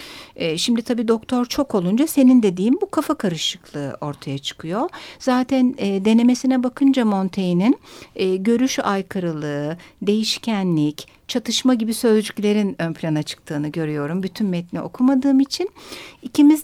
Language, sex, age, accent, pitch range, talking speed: Turkish, female, 60-79, native, 180-255 Hz, 110 wpm